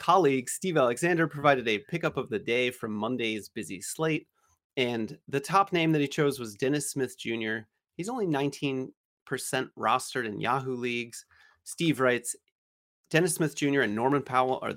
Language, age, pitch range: English, 30-49, 115-145 Hz